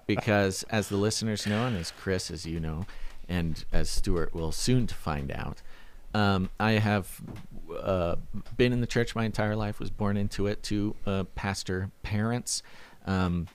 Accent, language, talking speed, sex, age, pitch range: American, English, 170 wpm, male, 40-59, 95-115 Hz